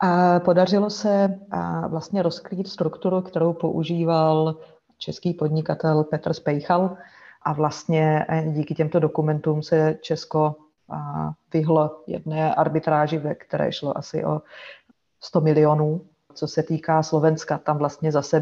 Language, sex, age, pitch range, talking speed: Slovak, female, 30-49, 150-160 Hz, 110 wpm